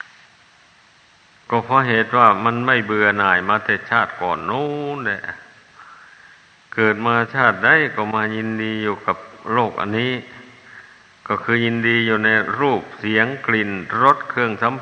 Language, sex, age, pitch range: Thai, male, 60-79, 110-125 Hz